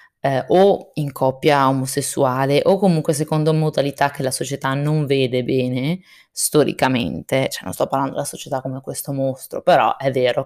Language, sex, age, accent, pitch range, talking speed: Italian, female, 20-39, native, 130-165 Hz, 160 wpm